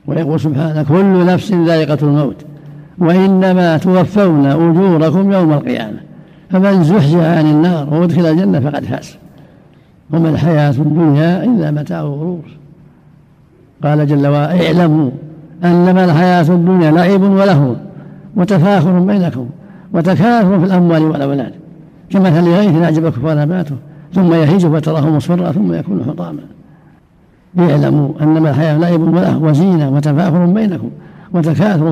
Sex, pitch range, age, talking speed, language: male, 155-185 Hz, 60-79, 110 wpm, Arabic